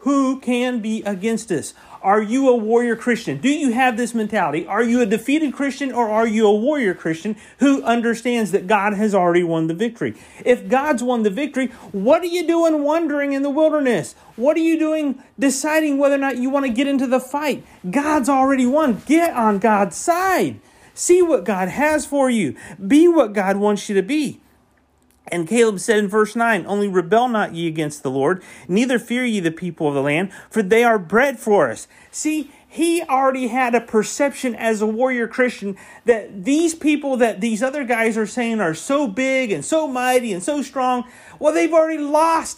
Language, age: English, 40-59